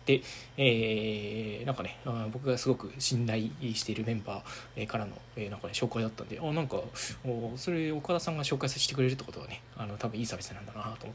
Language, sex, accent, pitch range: Japanese, male, native, 115-150 Hz